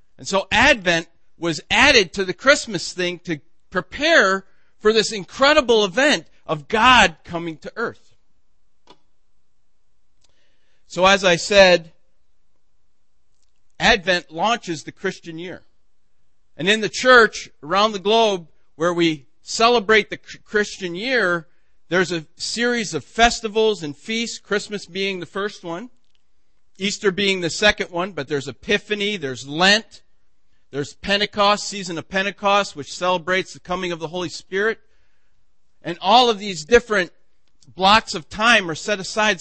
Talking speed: 135 wpm